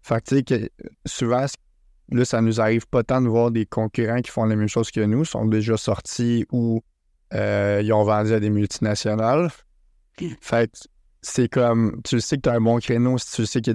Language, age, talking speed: French, 20-39, 205 wpm